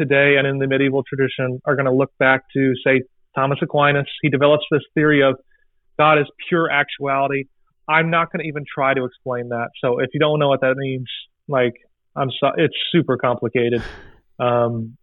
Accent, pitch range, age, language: American, 130-170 Hz, 30-49, English